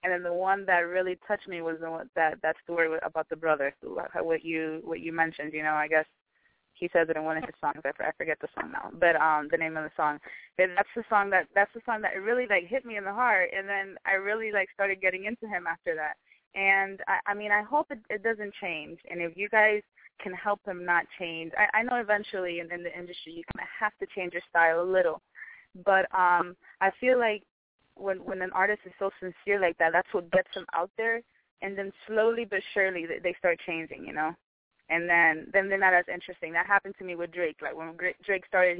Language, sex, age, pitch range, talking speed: English, female, 20-39, 170-200 Hz, 245 wpm